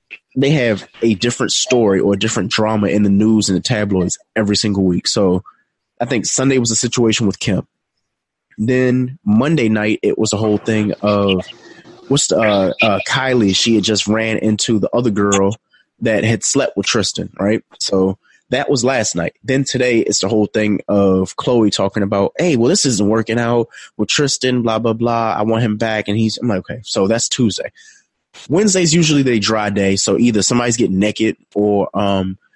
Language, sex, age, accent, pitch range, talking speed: English, male, 20-39, American, 100-125 Hz, 195 wpm